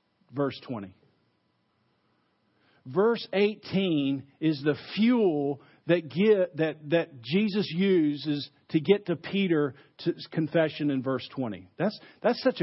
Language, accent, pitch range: English, American, 150-205 Hz